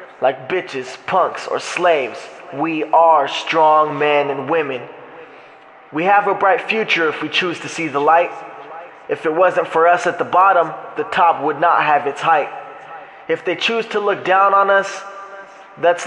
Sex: male